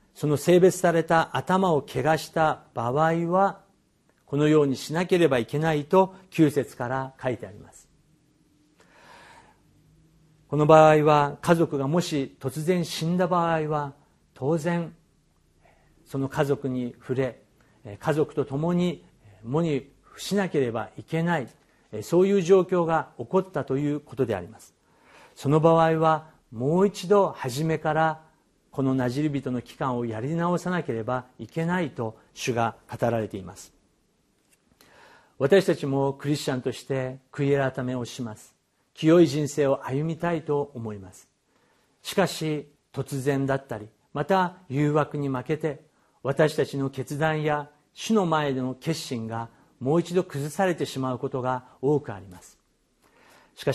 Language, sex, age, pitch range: Japanese, male, 50-69, 130-160 Hz